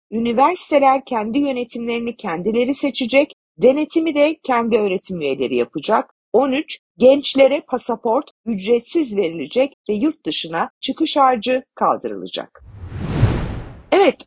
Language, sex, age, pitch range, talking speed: Turkish, female, 50-69, 230-305 Hz, 95 wpm